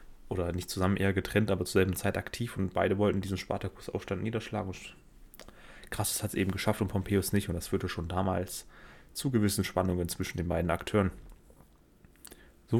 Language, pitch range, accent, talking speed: German, 90-105 Hz, German, 180 wpm